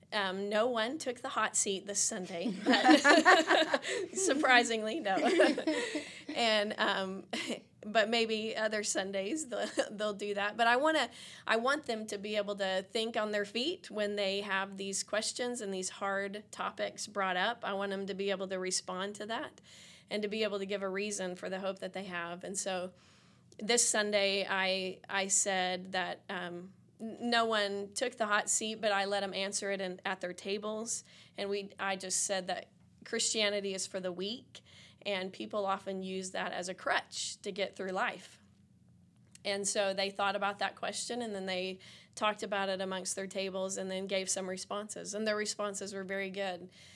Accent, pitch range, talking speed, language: American, 190-215 Hz, 185 wpm, English